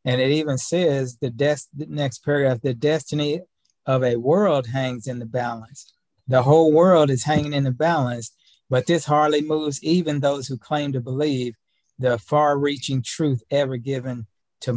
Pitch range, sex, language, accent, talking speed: 130-150 Hz, male, English, American, 170 wpm